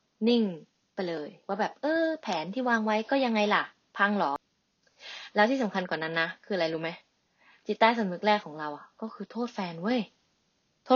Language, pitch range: Thai, 190-250 Hz